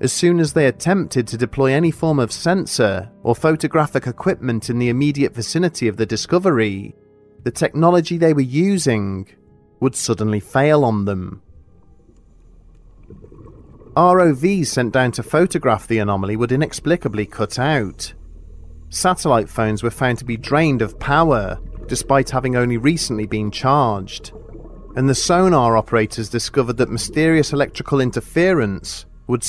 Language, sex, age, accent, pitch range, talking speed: English, male, 30-49, British, 110-155 Hz, 135 wpm